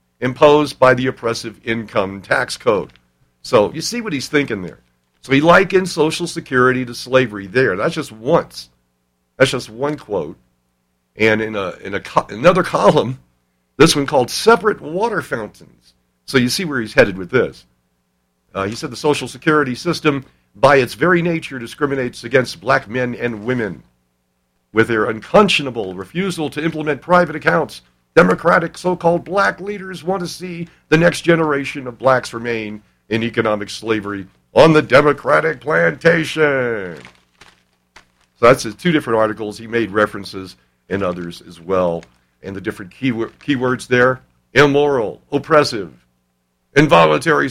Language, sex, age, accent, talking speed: English, male, 60-79, American, 150 wpm